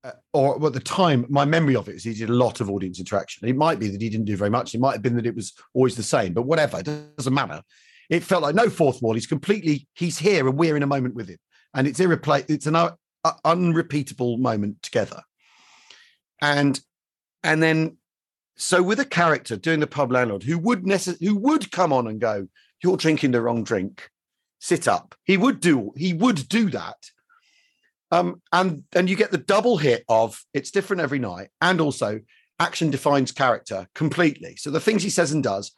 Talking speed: 215 wpm